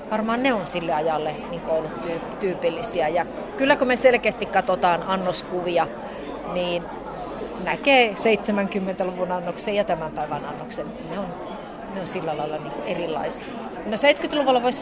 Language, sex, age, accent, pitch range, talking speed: Finnish, female, 30-49, native, 185-235 Hz, 140 wpm